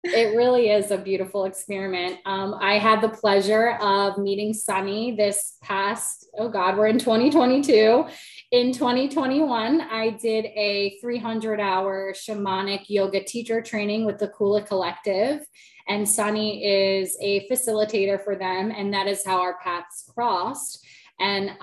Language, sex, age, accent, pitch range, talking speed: English, female, 20-39, American, 195-225 Hz, 140 wpm